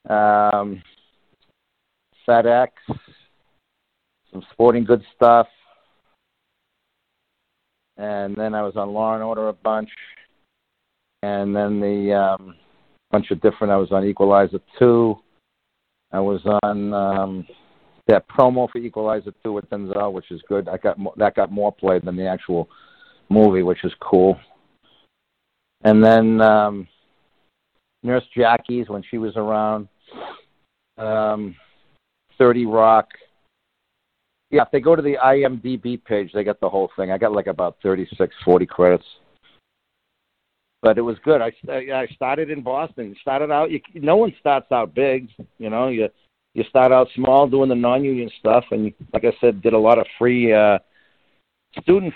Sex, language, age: male, English, 50-69